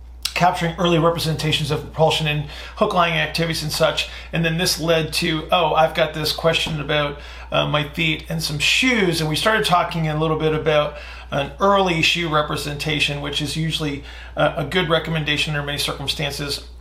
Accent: American